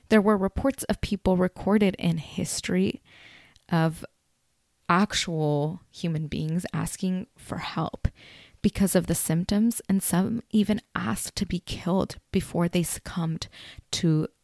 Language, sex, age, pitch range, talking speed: English, female, 20-39, 170-210 Hz, 125 wpm